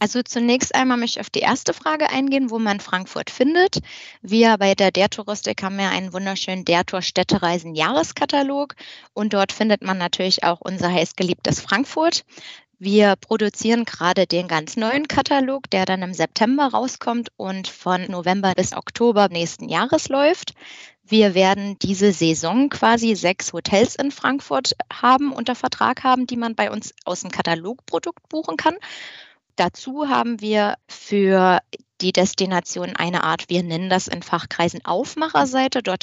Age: 20-39